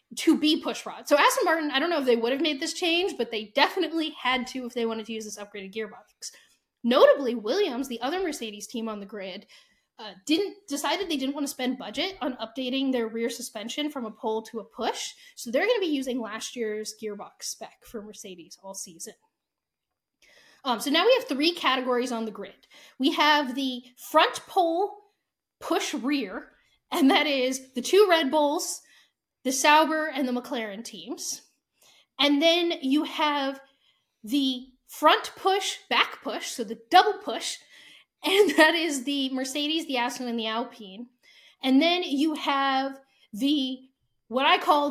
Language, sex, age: English, female, 10-29